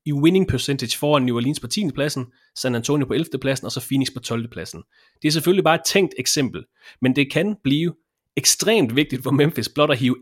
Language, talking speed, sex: English, 225 wpm, male